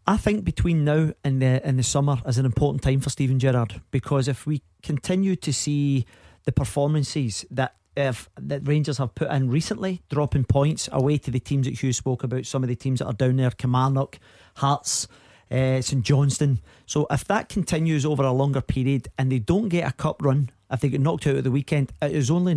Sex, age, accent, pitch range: male, 40-59, British, 130-145 Hz